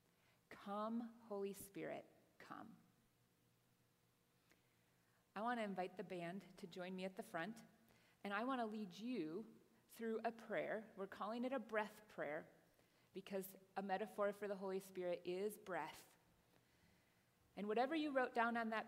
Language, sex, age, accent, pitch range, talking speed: English, female, 30-49, American, 180-235 Hz, 150 wpm